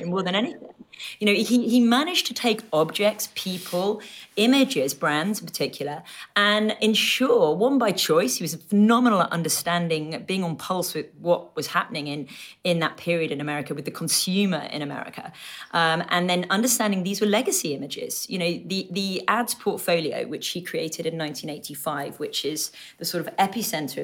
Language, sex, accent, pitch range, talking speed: English, female, British, 160-210 Hz, 175 wpm